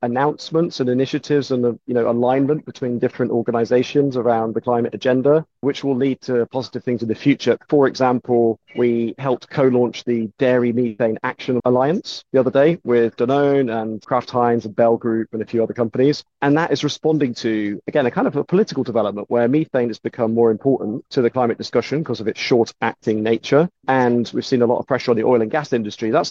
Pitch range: 115-135 Hz